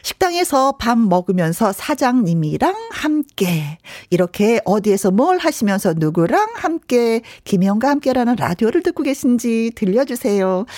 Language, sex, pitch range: Korean, female, 185-275 Hz